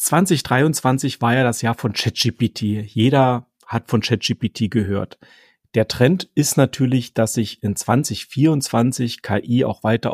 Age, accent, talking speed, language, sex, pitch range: 40-59, German, 135 wpm, German, male, 110-130 Hz